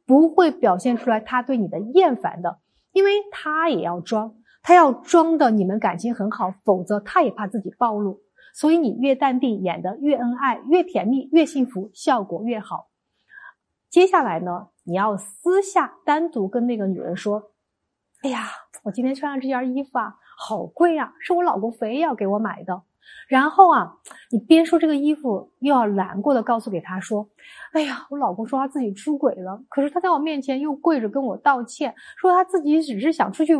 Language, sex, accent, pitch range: Chinese, female, native, 215-315 Hz